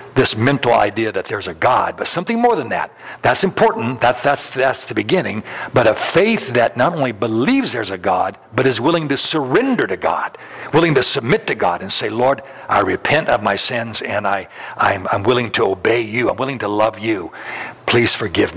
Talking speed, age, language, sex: 205 wpm, 60-79, English, male